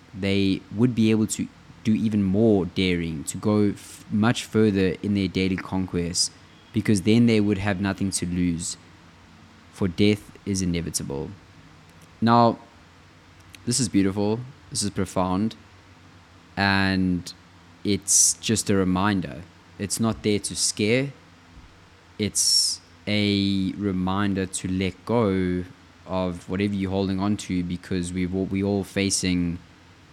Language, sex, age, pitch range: English, male, 20-39, 85-100 Hz